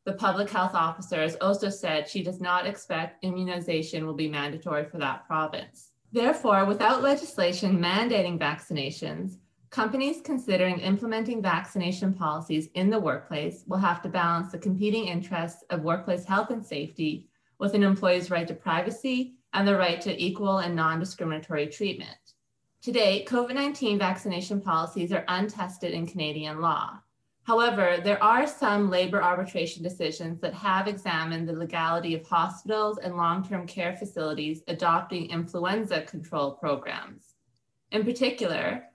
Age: 30-49